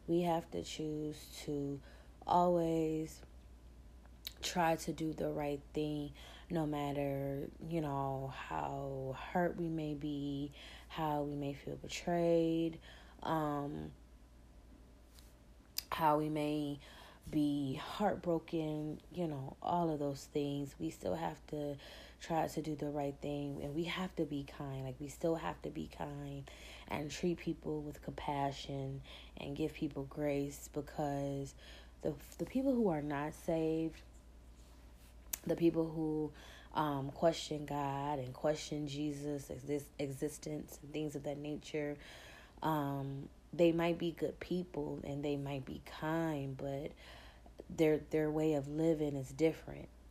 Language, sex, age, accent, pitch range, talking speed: English, female, 20-39, American, 140-160 Hz, 135 wpm